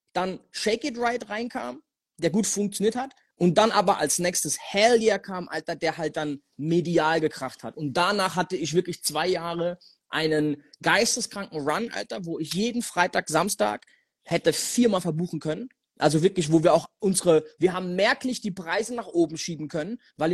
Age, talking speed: 30-49, 175 wpm